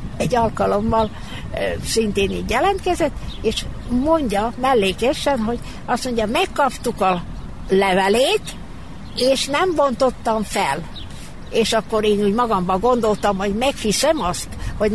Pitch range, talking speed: 200-260 Hz, 110 wpm